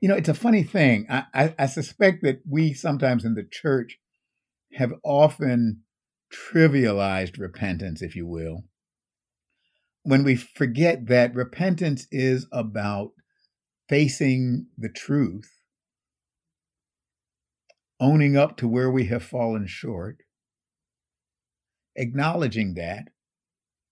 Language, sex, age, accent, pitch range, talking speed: English, male, 50-69, American, 110-155 Hz, 110 wpm